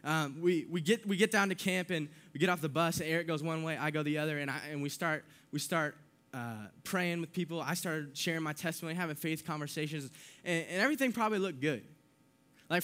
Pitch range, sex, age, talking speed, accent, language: 145-180 Hz, male, 10-29, 235 wpm, American, English